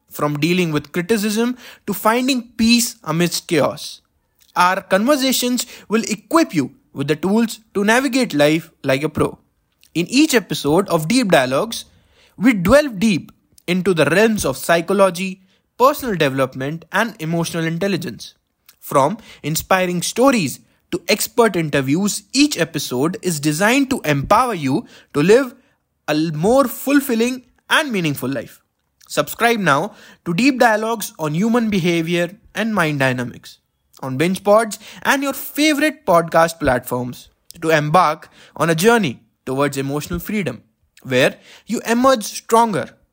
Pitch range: 155-230 Hz